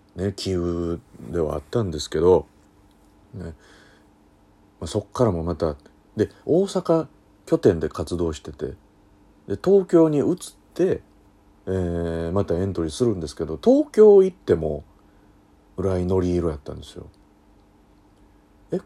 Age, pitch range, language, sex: 40-59, 75-100 Hz, Japanese, male